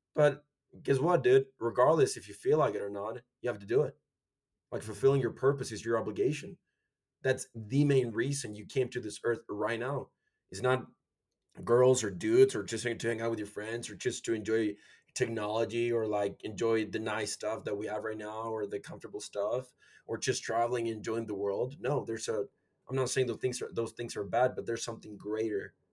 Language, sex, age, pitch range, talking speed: English, male, 20-39, 110-135 Hz, 215 wpm